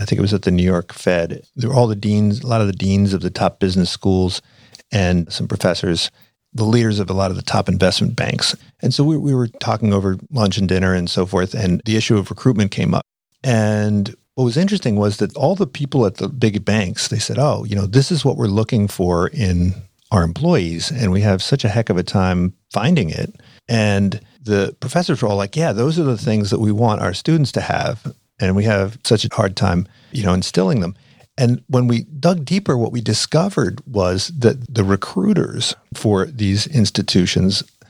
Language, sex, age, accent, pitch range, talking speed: English, male, 50-69, American, 100-130 Hz, 220 wpm